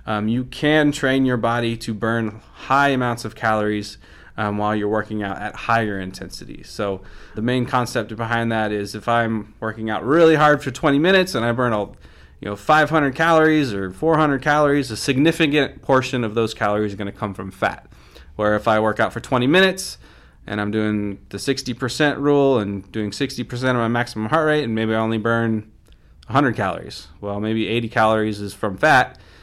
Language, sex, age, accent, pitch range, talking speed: English, male, 20-39, American, 105-130 Hz, 190 wpm